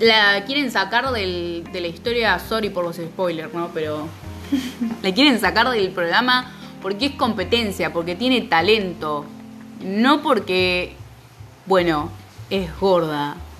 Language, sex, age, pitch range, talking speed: English, female, 20-39, 170-230 Hz, 130 wpm